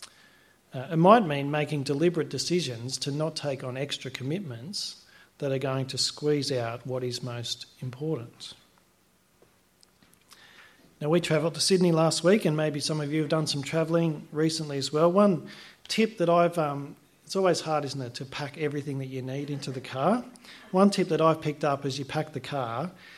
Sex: male